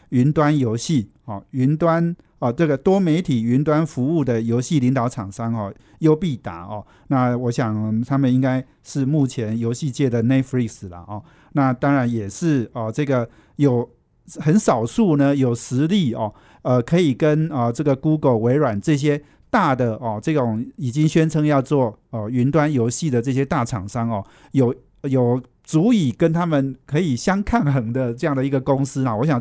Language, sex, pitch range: Chinese, male, 120-150 Hz